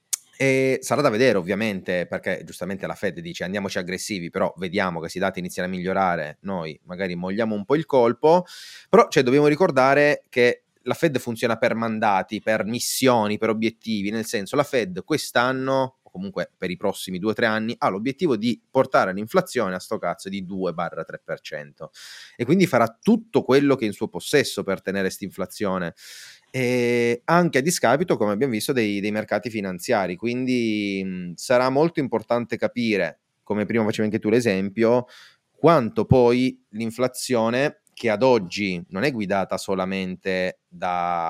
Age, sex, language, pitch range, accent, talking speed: 30-49, male, Italian, 95-125 Hz, native, 160 wpm